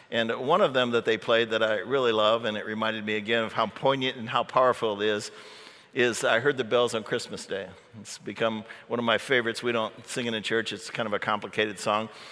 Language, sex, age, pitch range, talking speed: English, male, 50-69, 105-130 Hz, 245 wpm